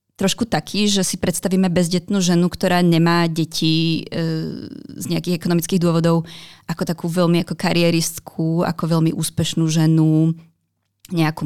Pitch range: 160-180 Hz